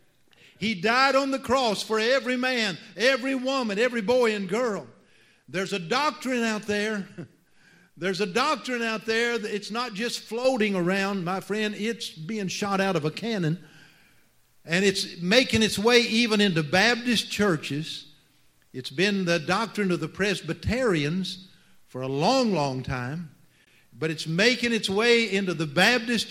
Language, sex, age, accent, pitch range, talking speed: English, male, 50-69, American, 180-240 Hz, 155 wpm